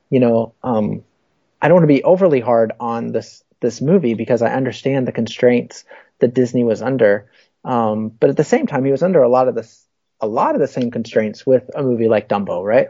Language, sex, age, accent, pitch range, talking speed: English, male, 30-49, American, 110-130 Hz, 225 wpm